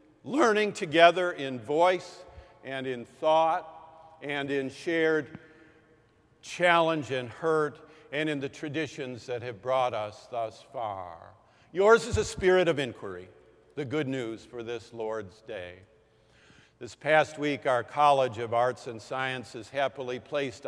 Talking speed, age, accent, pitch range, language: 135 wpm, 50-69, American, 125-155 Hz, English